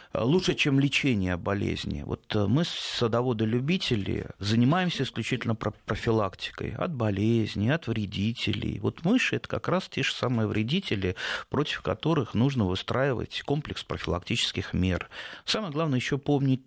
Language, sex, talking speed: Russian, male, 125 wpm